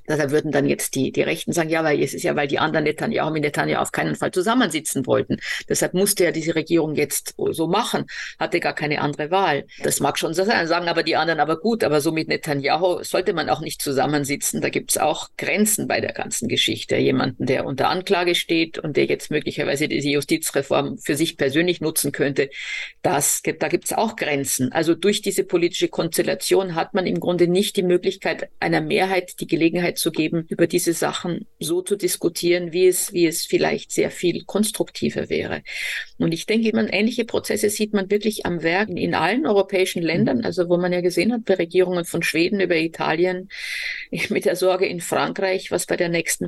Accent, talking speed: German, 200 wpm